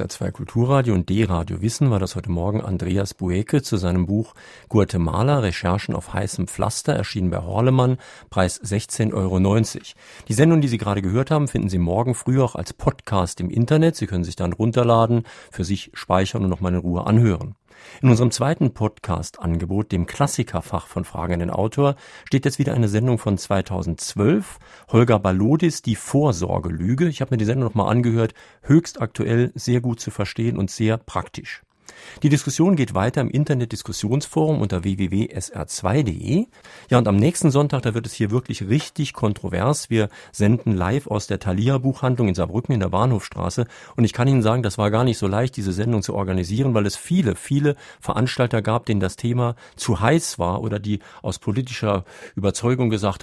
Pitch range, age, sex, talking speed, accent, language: 95-125 Hz, 50-69, male, 180 wpm, German, German